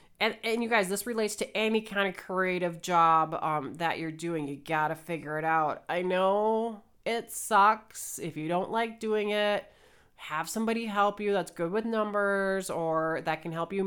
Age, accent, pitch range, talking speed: 30-49, American, 165-220 Hz, 195 wpm